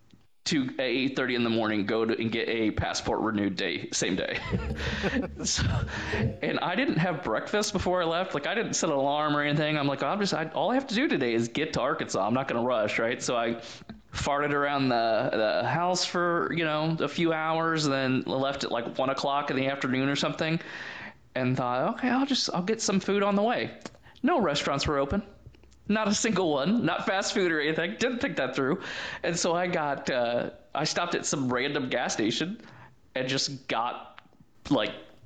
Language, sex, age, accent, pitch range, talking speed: English, male, 20-39, American, 120-170 Hz, 210 wpm